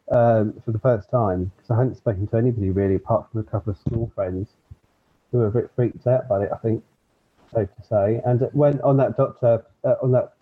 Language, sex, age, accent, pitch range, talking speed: English, male, 30-49, British, 110-125 Hz, 235 wpm